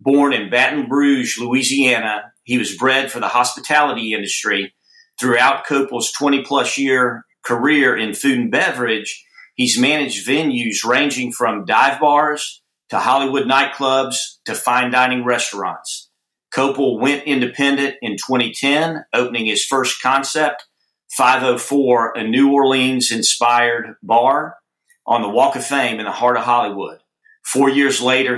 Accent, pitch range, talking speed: American, 120-145 Hz, 130 wpm